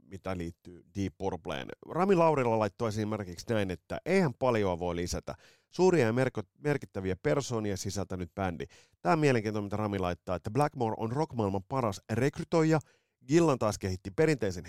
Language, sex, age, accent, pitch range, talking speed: Finnish, male, 30-49, native, 95-135 Hz, 145 wpm